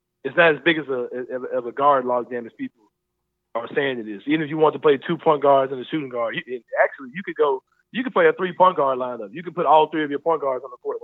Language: English